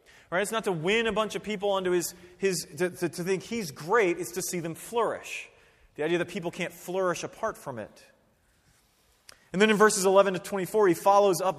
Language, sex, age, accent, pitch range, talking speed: English, male, 30-49, American, 170-215 Hz, 215 wpm